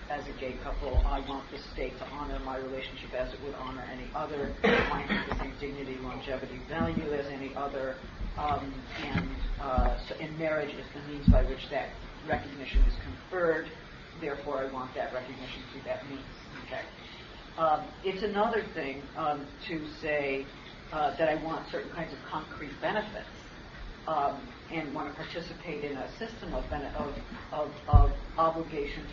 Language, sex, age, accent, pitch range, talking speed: English, female, 50-69, American, 130-165 Hz, 170 wpm